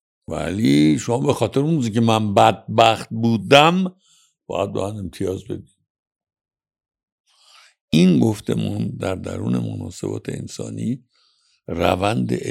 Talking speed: 110 wpm